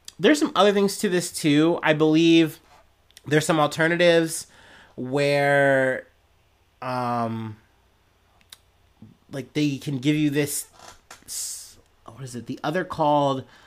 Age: 30-49